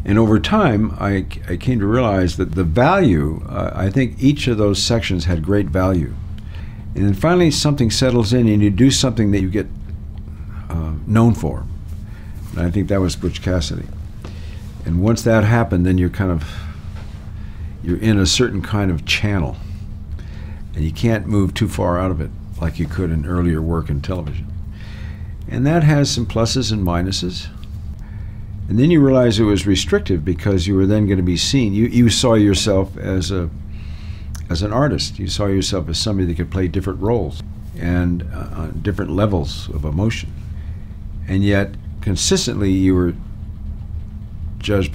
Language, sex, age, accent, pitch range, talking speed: English, male, 60-79, American, 85-105 Hz, 170 wpm